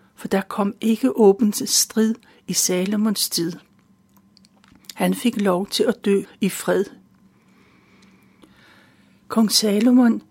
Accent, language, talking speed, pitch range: native, Danish, 110 wpm, 200-235 Hz